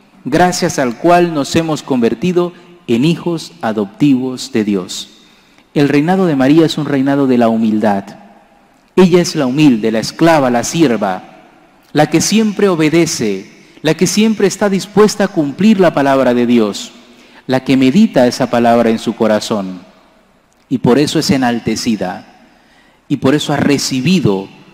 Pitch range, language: 110-160 Hz, English